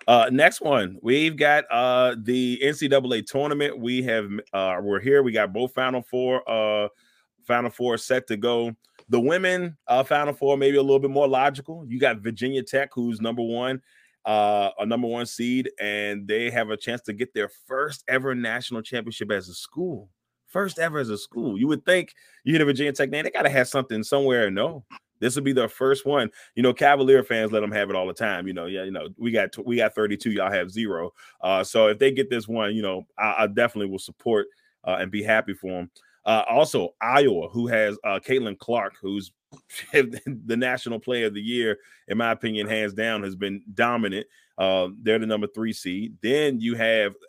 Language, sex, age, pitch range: English, male, 30-49, 110-135 Hz